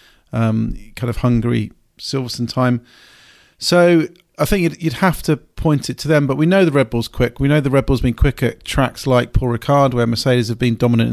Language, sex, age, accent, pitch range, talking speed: English, male, 40-59, British, 120-135 Hz, 220 wpm